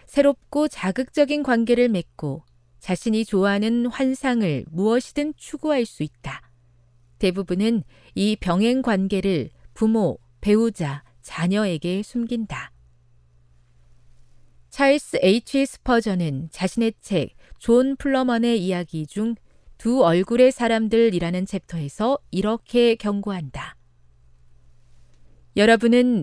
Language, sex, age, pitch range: Korean, female, 40-59, 145-235 Hz